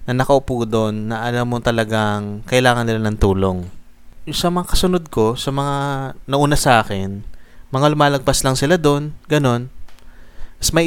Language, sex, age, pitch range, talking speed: Filipino, male, 20-39, 105-140 Hz, 155 wpm